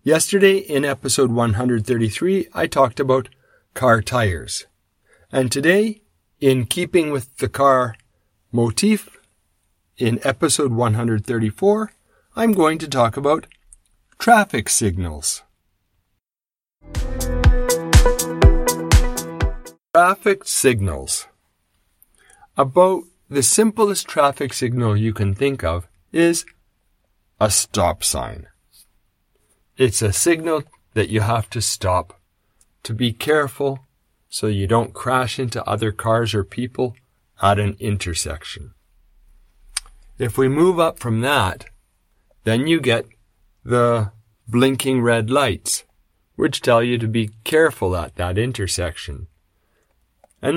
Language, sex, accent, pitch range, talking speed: English, male, American, 100-140 Hz, 105 wpm